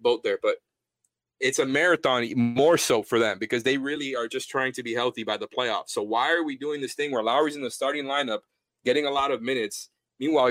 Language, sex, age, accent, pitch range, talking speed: English, male, 30-49, American, 115-150 Hz, 235 wpm